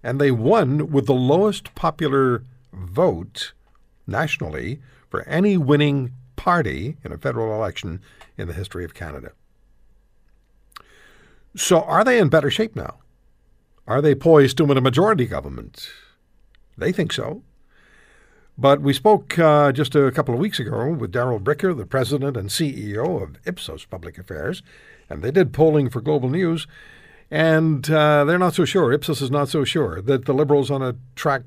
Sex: male